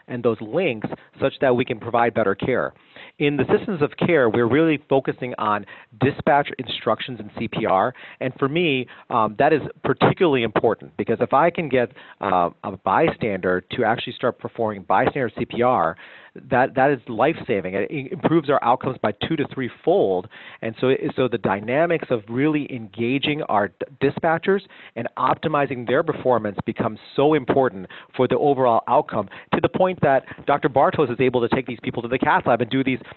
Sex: male